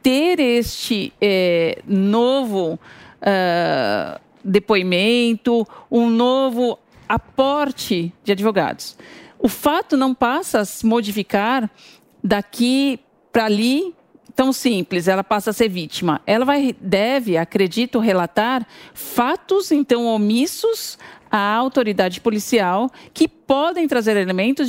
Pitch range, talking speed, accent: 205-270 Hz, 100 wpm, Brazilian